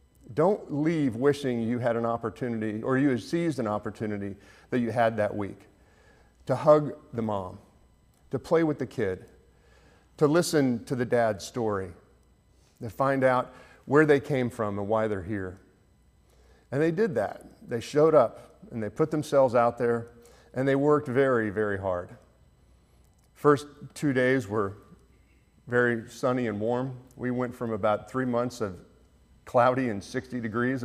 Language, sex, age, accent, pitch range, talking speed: English, male, 50-69, American, 100-130 Hz, 160 wpm